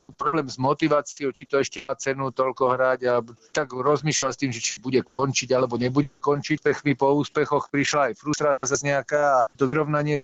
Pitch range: 125-145 Hz